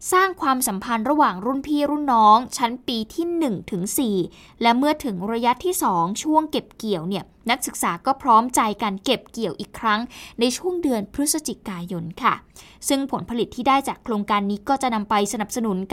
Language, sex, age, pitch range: Thai, female, 10-29, 215-280 Hz